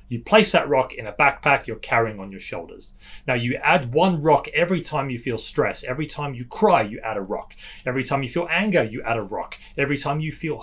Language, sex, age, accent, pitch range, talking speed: English, male, 30-49, British, 115-160 Hz, 245 wpm